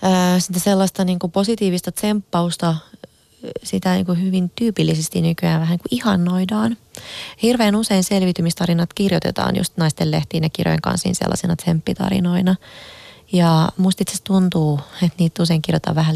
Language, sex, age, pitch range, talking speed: Finnish, female, 20-39, 160-185 Hz, 120 wpm